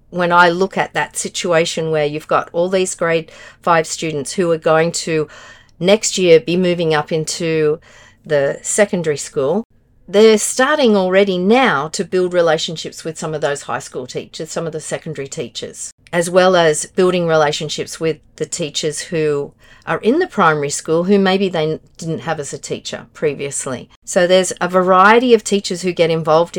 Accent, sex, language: Australian, female, English